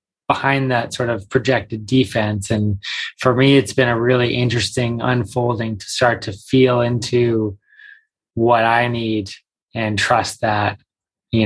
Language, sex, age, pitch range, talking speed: English, male, 20-39, 110-125 Hz, 140 wpm